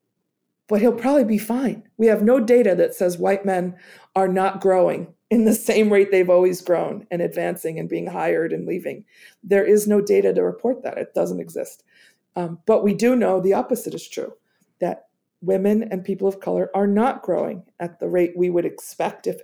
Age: 40-59